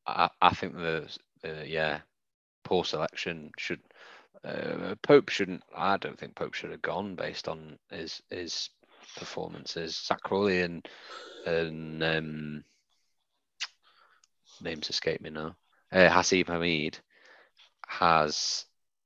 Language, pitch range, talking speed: English, 80-100 Hz, 115 wpm